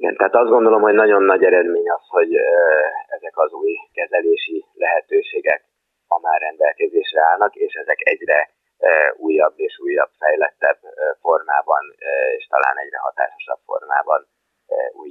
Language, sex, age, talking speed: Hungarian, male, 30-49, 130 wpm